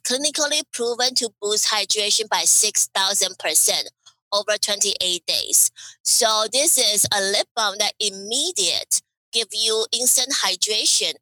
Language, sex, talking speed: English, female, 135 wpm